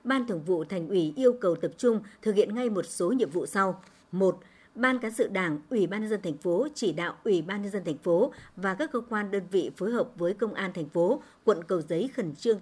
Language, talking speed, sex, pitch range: Vietnamese, 255 wpm, male, 180-240 Hz